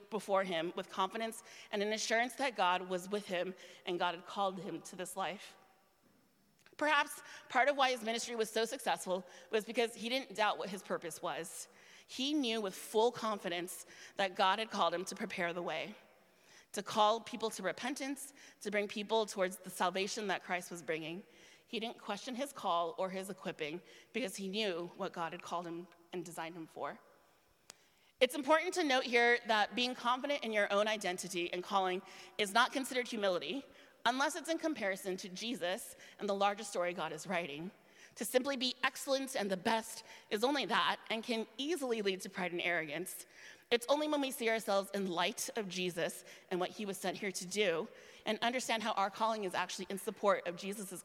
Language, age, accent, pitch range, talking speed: English, 30-49, American, 180-230 Hz, 195 wpm